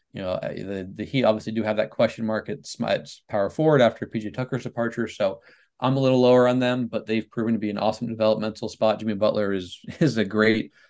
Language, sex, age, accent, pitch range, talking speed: English, male, 20-39, American, 100-115 Hz, 225 wpm